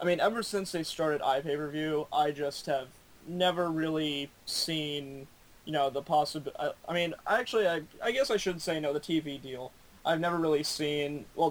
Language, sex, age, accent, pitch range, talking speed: English, male, 20-39, American, 140-165 Hz, 180 wpm